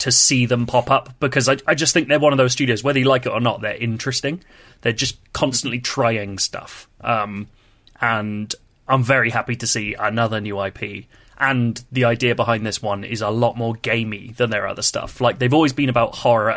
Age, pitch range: 20-39, 105-125 Hz